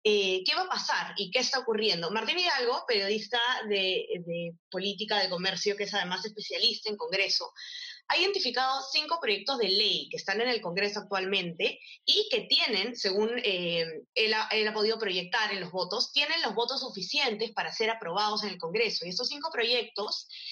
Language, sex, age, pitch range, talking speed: Spanish, female, 20-39, 195-255 Hz, 180 wpm